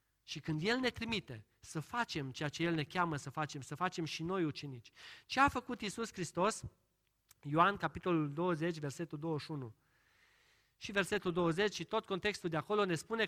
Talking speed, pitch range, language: 175 wpm, 125-190 Hz, Romanian